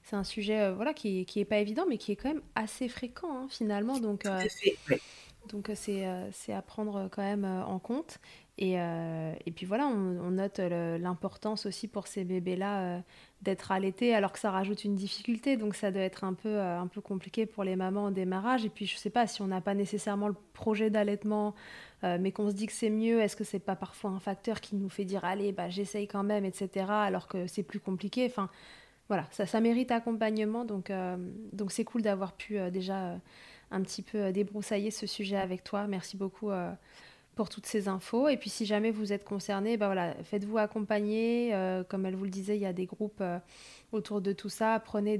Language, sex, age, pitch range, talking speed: French, female, 20-39, 190-215 Hz, 230 wpm